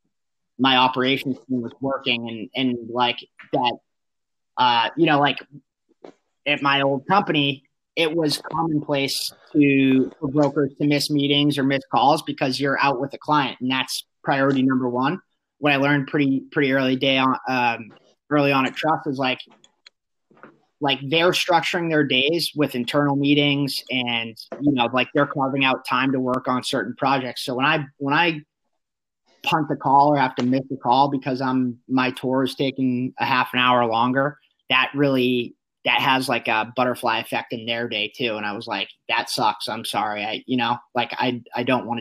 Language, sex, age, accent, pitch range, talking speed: English, male, 30-49, American, 125-145 Hz, 185 wpm